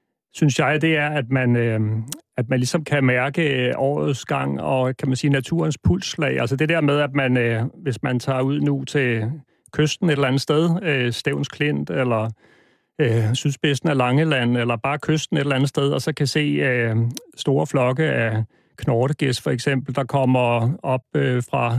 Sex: male